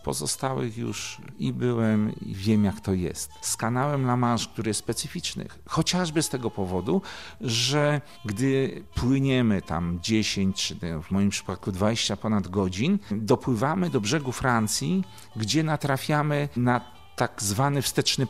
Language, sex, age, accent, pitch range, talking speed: Polish, male, 50-69, native, 110-150 Hz, 140 wpm